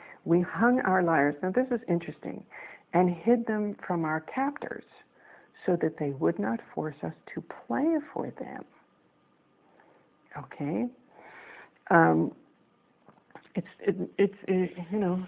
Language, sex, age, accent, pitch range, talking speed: English, female, 60-79, American, 170-220 Hz, 105 wpm